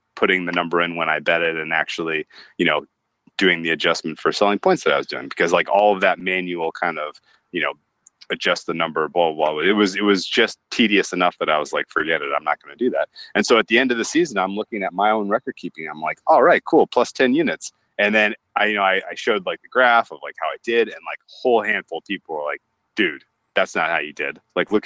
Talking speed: 275 wpm